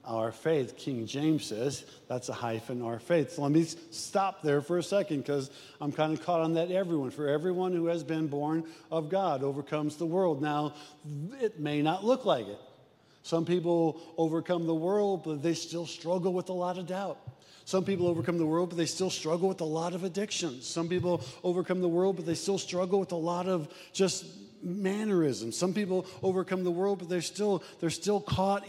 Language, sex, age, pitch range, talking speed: English, male, 50-69, 165-200 Hz, 205 wpm